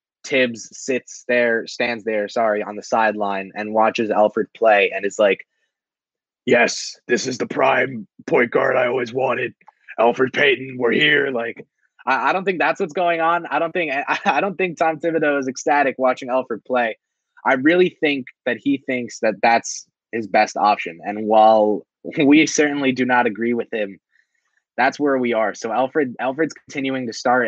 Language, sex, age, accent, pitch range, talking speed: English, male, 20-39, American, 105-135 Hz, 180 wpm